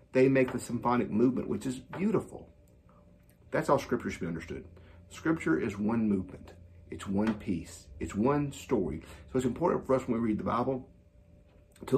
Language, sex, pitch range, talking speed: English, male, 95-130 Hz, 175 wpm